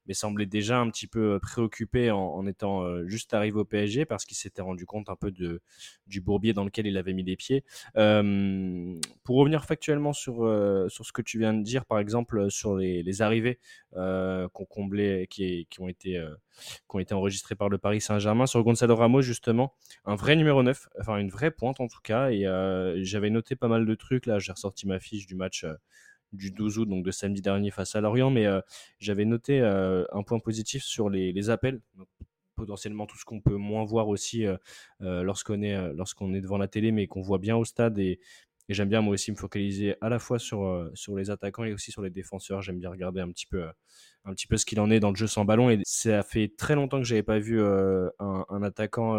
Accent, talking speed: French, 225 wpm